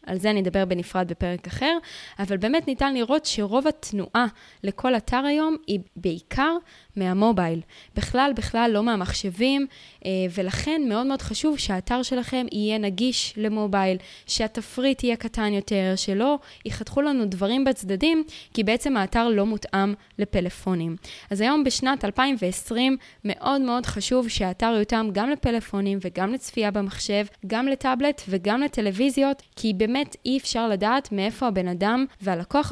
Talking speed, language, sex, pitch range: 135 wpm, Hebrew, female, 195-255 Hz